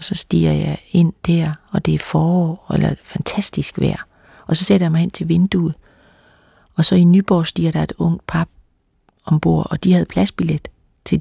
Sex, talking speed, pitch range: female, 205 wpm, 145-175 Hz